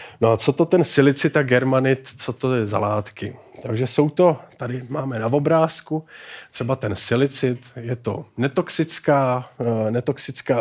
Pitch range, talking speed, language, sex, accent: 115-145 Hz, 145 wpm, Czech, male, native